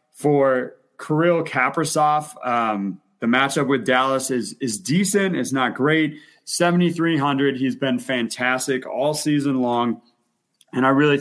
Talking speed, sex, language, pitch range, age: 130 wpm, male, English, 125-150 Hz, 30-49